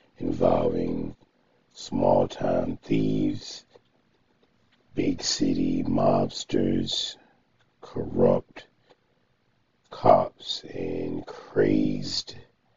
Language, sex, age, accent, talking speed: English, male, 50-69, American, 50 wpm